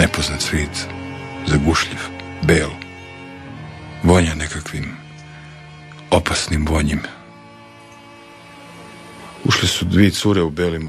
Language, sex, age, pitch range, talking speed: Croatian, male, 50-69, 80-100 Hz, 75 wpm